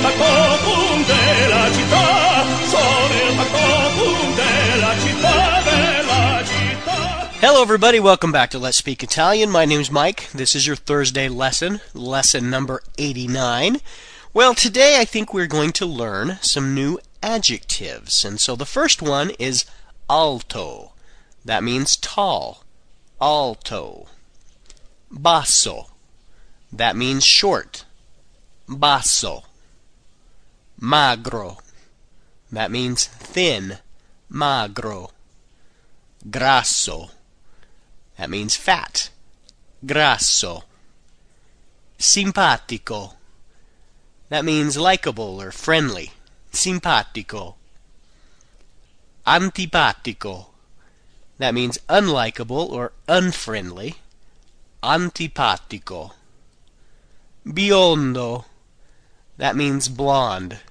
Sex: male